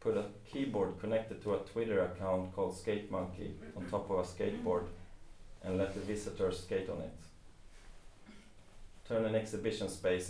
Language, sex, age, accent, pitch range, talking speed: English, male, 30-49, Swedish, 95-105 Hz, 150 wpm